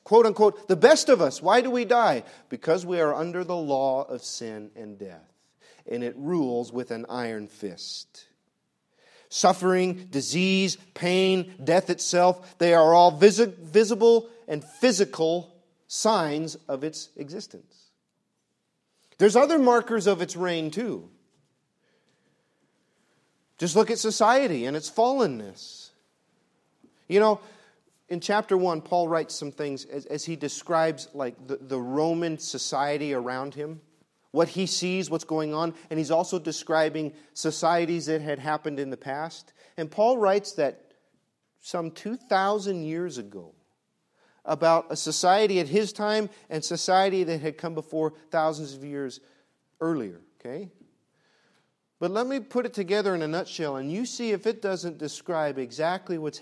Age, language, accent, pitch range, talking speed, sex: 40-59, English, American, 150-195 Hz, 145 wpm, male